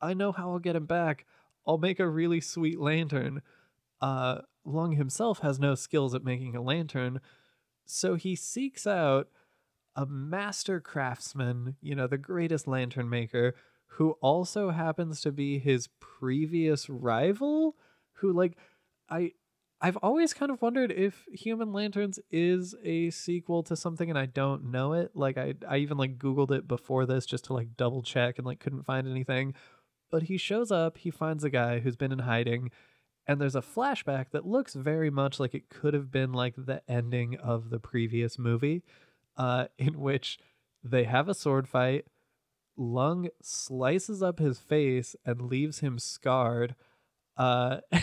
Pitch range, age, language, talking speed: 130-170 Hz, 20-39, English, 170 wpm